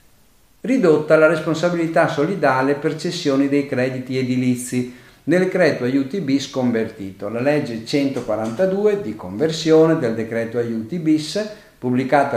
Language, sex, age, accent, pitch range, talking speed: Italian, male, 50-69, native, 120-170 Hz, 115 wpm